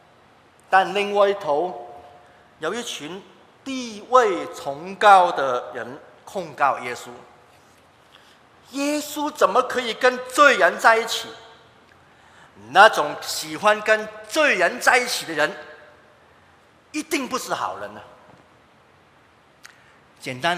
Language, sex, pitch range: Chinese, male, 165-240 Hz